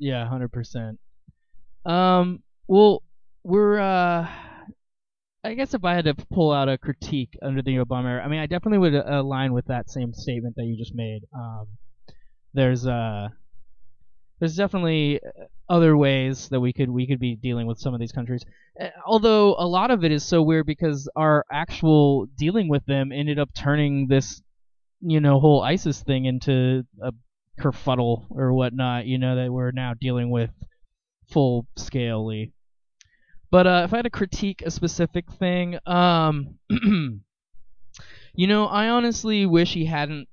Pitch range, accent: 125-160 Hz, American